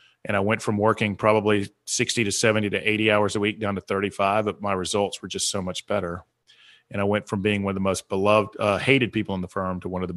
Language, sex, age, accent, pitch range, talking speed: English, male, 30-49, American, 95-110 Hz, 265 wpm